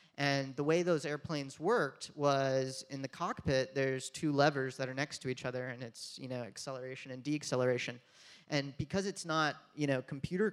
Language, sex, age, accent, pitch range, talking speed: English, male, 30-49, American, 130-155 Hz, 190 wpm